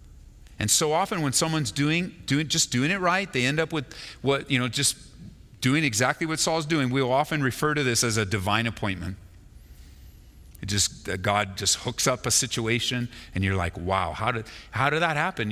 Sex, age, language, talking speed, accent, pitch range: male, 40-59, English, 195 wpm, American, 90-130 Hz